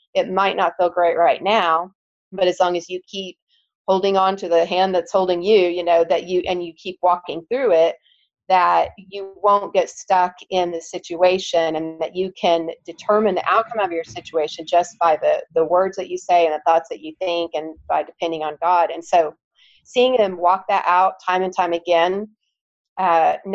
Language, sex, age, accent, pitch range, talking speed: English, female, 40-59, American, 170-205 Hz, 205 wpm